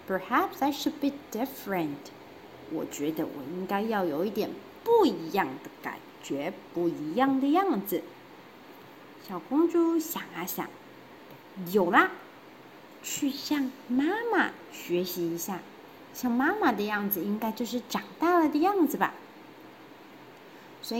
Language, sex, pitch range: Chinese, female, 200-305 Hz